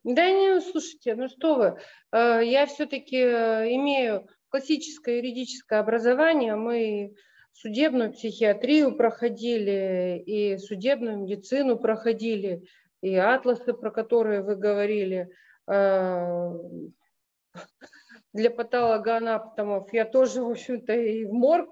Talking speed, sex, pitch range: 95 wpm, female, 215-285 Hz